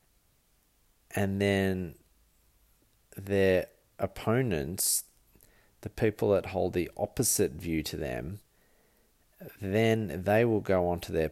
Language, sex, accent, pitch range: English, male, Australian, 80-95 Hz